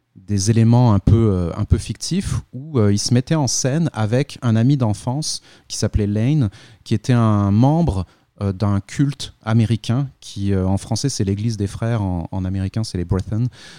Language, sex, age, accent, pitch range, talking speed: French, male, 30-49, French, 100-125 Hz, 195 wpm